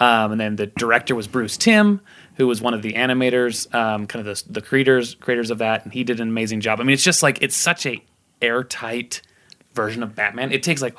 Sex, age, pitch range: male, 30-49, 110-135 Hz